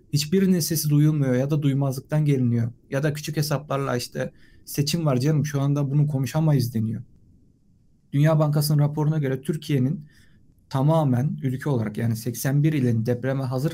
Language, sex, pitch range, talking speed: Turkish, male, 120-150 Hz, 145 wpm